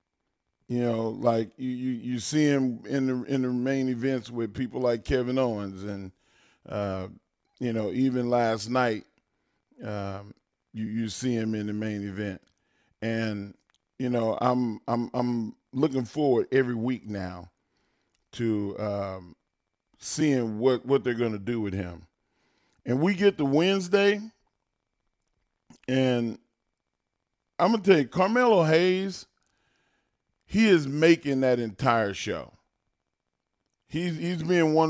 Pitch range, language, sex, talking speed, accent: 115-140 Hz, English, male, 135 wpm, American